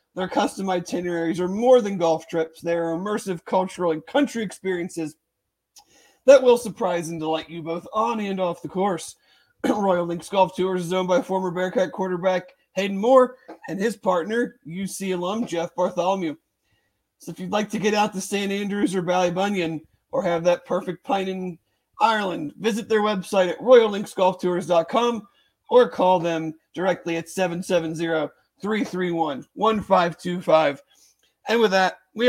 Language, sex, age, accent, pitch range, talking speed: English, male, 40-59, American, 175-220 Hz, 155 wpm